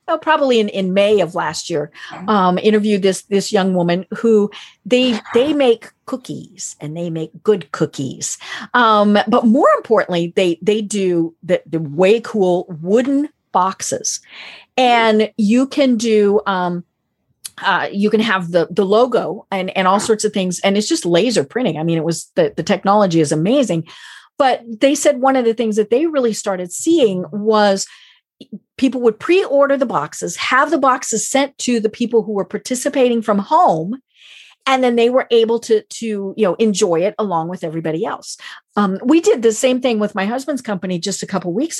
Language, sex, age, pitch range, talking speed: English, female, 40-59, 190-250 Hz, 185 wpm